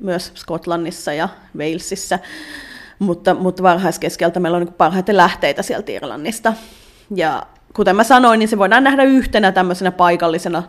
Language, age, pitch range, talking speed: Finnish, 30-49, 175-210 Hz, 130 wpm